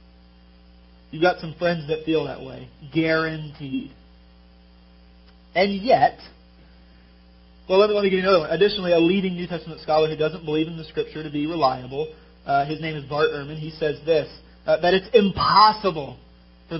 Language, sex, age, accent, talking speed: English, male, 40-59, American, 170 wpm